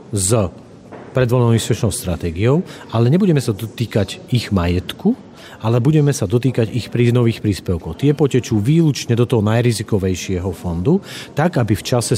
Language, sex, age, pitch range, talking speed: Slovak, male, 40-59, 100-125 Hz, 145 wpm